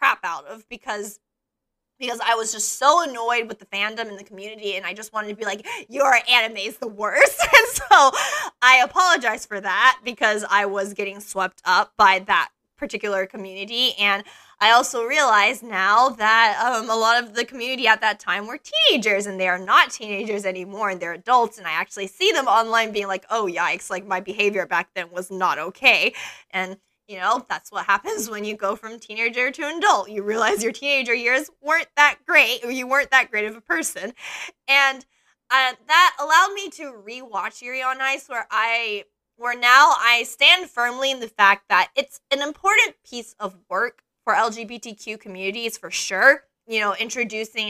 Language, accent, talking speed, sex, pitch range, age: English, American, 190 wpm, female, 205-255 Hz, 20-39